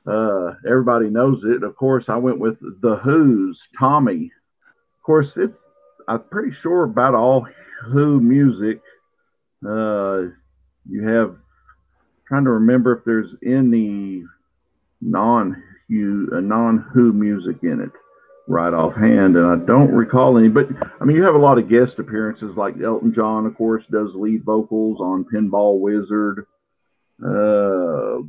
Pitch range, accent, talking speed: 100-125 Hz, American, 140 wpm